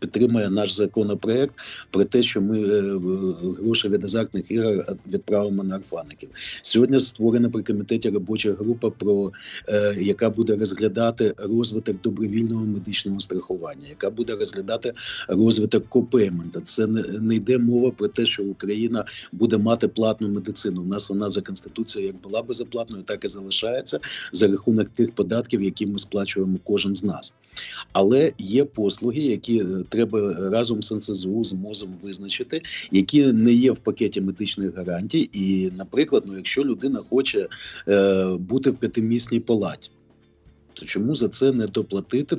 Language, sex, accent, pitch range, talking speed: Ukrainian, male, native, 95-115 Hz, 145 wpm